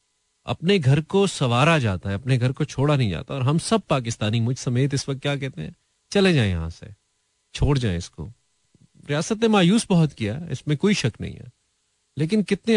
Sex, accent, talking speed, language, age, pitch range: male, native, 195 wpm, Hindi, 30-49, 110-155 Hz